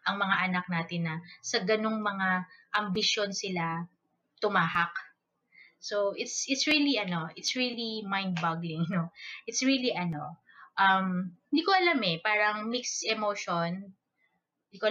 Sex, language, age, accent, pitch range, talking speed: female, Filipino, 20-39, native, 180-225 Hz, 135 wpm